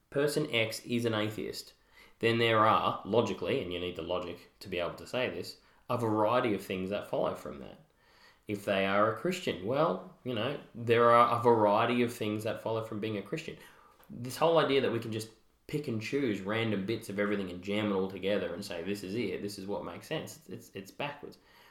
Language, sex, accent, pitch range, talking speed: English, male, Australian, 100-120 Hz, 225 wpm